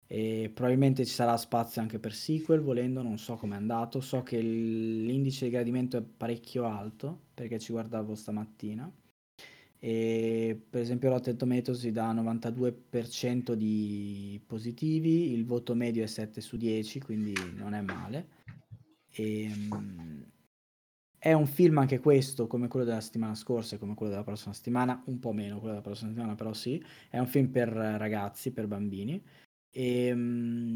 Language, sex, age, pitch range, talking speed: Italian, male, 20-39, 110-130 Hz, 160 wpm